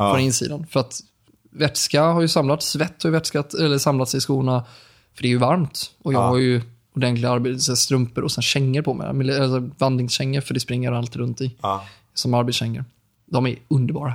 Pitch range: 125-145 Hz